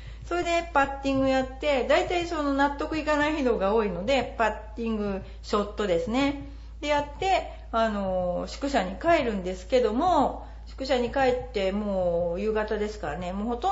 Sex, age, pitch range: female, 40-59, 210-295 Hz